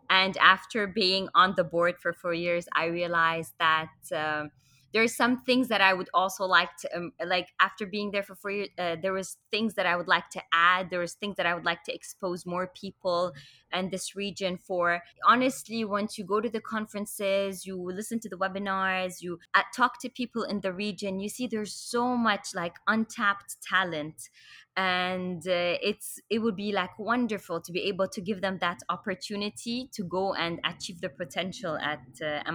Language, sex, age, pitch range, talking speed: English, female, 20-39, 175-205 Hz, 195 wpm